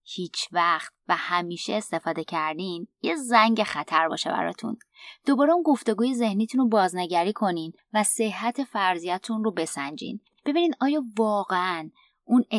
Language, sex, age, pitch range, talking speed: Persian, female, 20-39, 170-230 Hz, 130 wpm